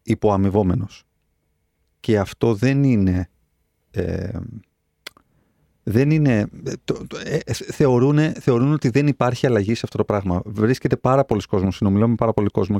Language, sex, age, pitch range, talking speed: Greek, male, 30-49, 90-125 Hz, 130 wpm